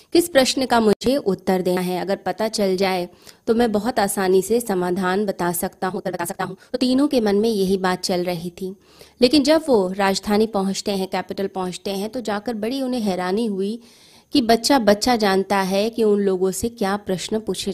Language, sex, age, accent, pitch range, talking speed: Hindi, female, 30-49, native, 185-230 Hz, 205 wpm